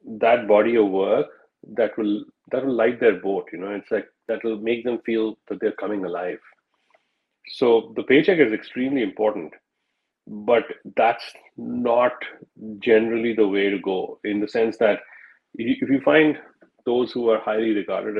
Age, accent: 40-59, Indian